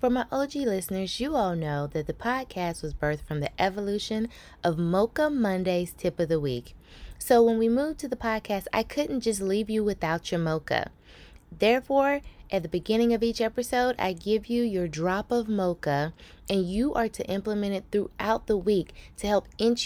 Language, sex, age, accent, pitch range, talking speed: English, female, 20-39, American, 155-215 Hz, 190 wpm